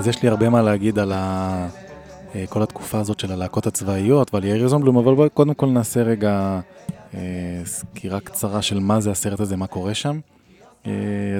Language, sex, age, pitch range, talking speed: Hebrew, male, 20-39, 95-115 Hz, 185 wpm